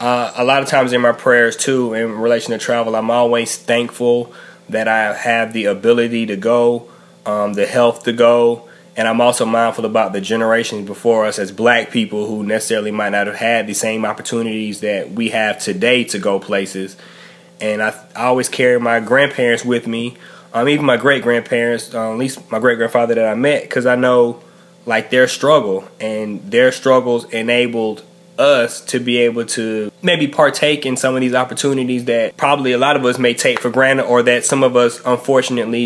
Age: 20-39